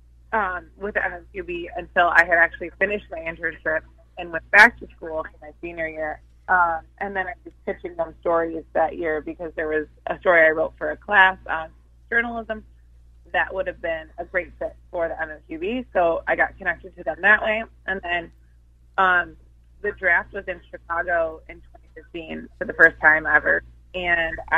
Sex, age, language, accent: female, 20-39, English, American